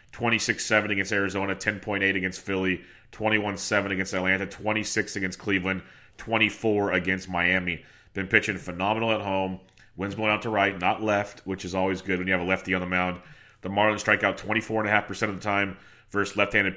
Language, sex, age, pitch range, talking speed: English, male, 30-49, 95-110 Hz, 175 wpm